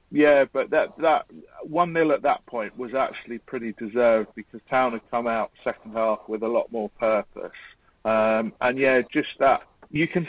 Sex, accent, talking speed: male, British, 180 wpm